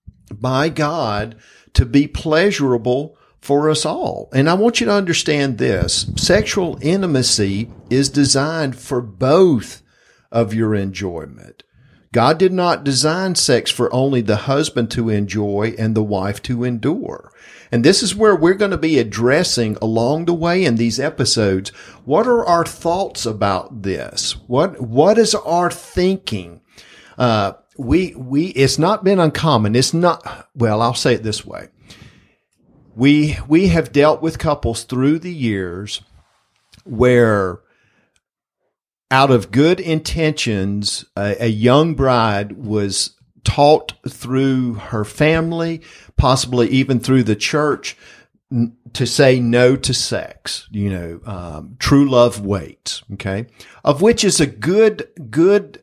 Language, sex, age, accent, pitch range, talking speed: English, male, 50-69, American, 110-155 Hz, 135 wpm